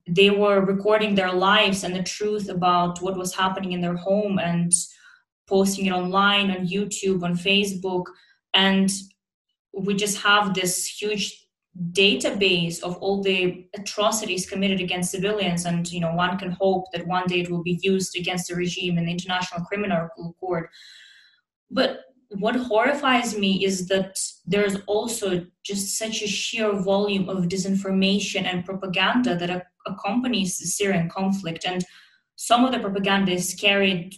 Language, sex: English, female